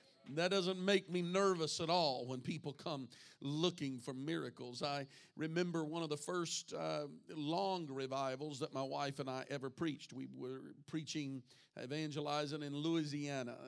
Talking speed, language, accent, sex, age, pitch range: 155 wpm, English, American, male, 50-69, 135-160 Hz